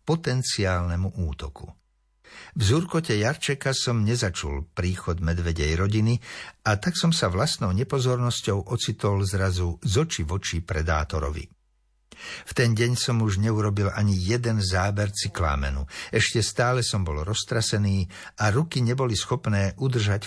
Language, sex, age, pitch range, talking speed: Slovak, male, 60-79, 90-120 Hz, 125 wpm